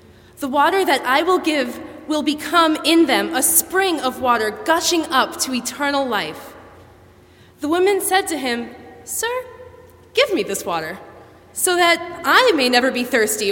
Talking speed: 160 wpm